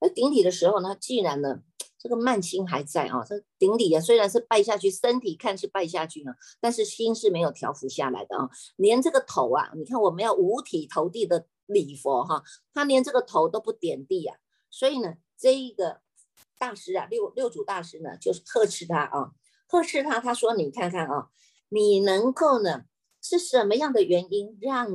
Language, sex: Chinese, female